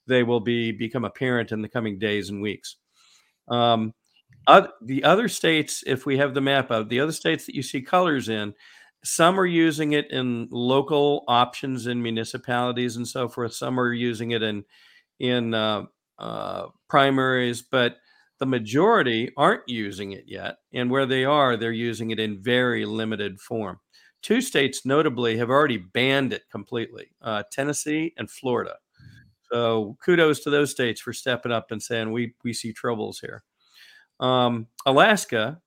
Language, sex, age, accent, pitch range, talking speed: English, male, 50-69, American, 115-140 Hz, 160 wpm